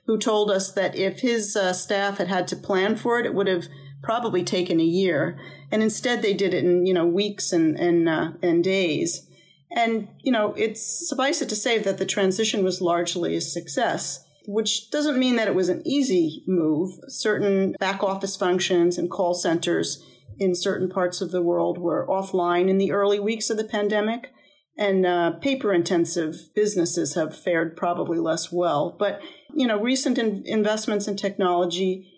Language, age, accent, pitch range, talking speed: English, 40-59, American, 180-215 Hz, 185 wpm